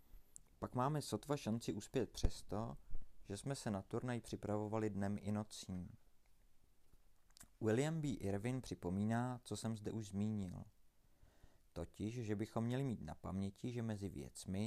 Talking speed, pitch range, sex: 140 wpm, 95-115 Hz, male